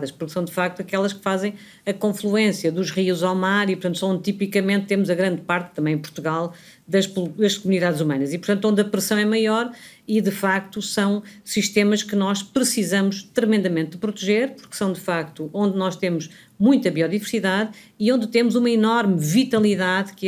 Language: Portuguese